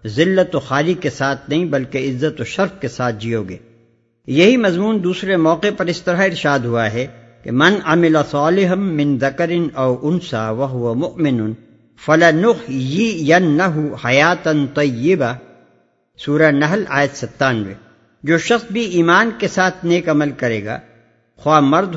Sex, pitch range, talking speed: male, 125-175 Hz, 145 wpm